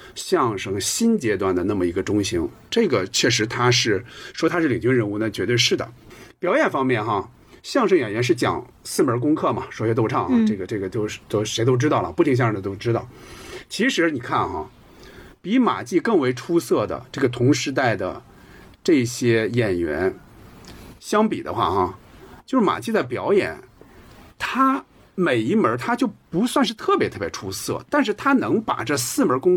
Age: 50-69